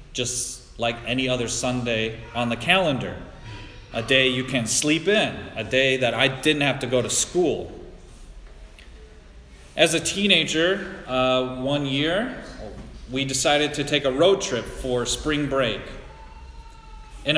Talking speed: 140 wpm